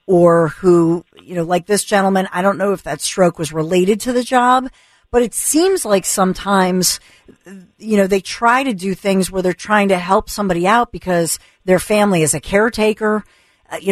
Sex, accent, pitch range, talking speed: female, American, 185-230 Hz, 195 wpm